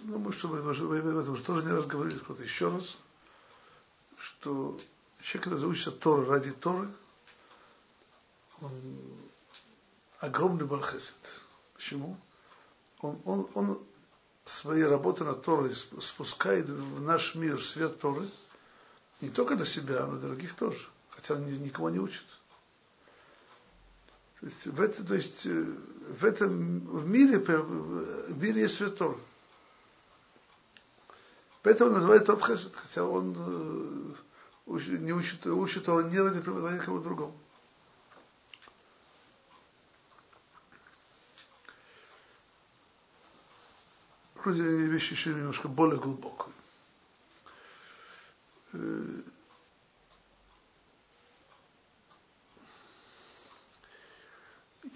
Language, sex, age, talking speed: Russian, male, 60-79, 90 wpm